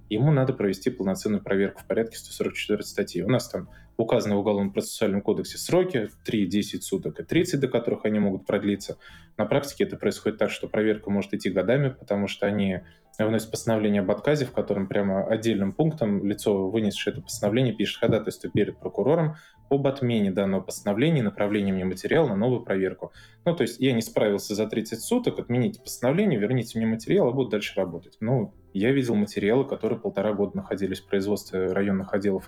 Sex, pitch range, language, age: male, 100-115 Hz, Russian, 20-39